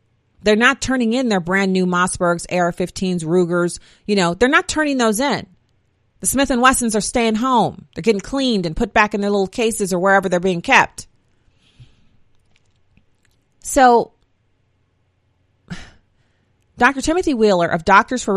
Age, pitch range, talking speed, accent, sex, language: 40-59, 165-220 Hz, 145 wpm, American, female, English